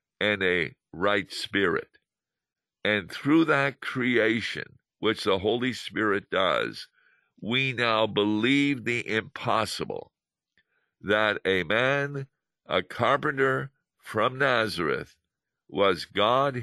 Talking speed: 95 wpm